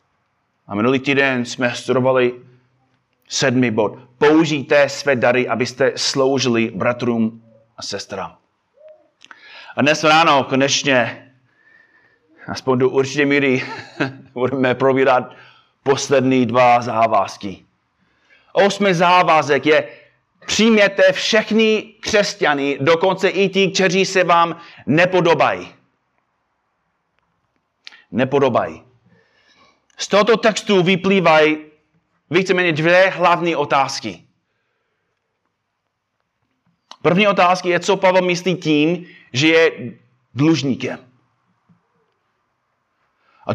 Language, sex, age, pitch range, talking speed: Czech, male, 30-49, 130-180 Hz, 85 wpm